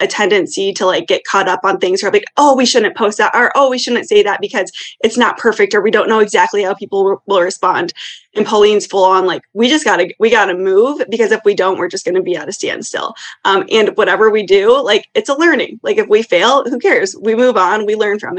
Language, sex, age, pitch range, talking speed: English, female, 20-39, 195-295 Hz, 255 wpm